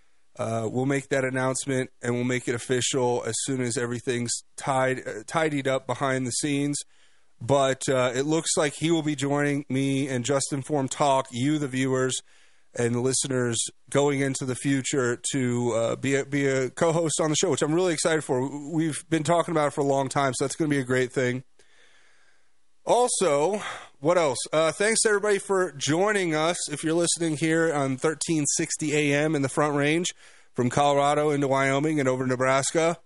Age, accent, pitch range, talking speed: 30-49, American, 130-155 Hz, 190 wpm